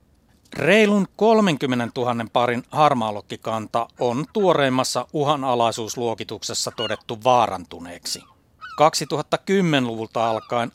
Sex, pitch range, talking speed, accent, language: male, 115-150 Hz, 65 wpm, native, Finnish